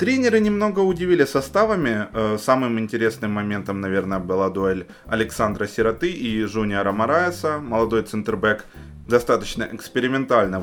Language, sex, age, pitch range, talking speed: Ukrainian, male, 20-39, 100-145 Hz, 105 wpm